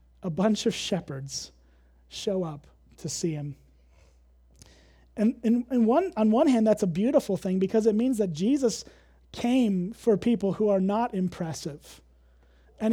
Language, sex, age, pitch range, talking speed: English, male, 30-49, 155-215 Hz, 150 wpm